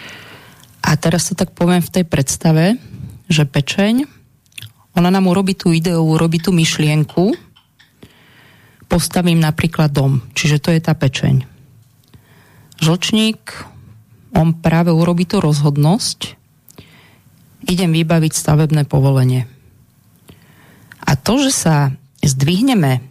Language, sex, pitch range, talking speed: Slovak, female, 145-175 Hz, 105 wpm